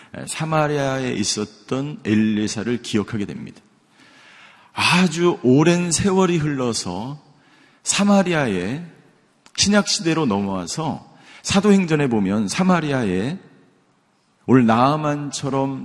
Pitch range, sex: 110-150 Hz, male